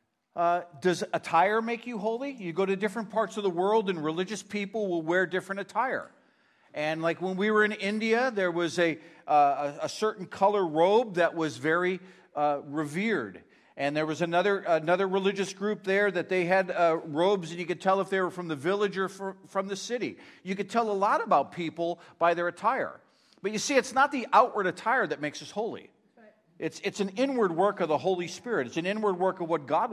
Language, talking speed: English, 215 wpm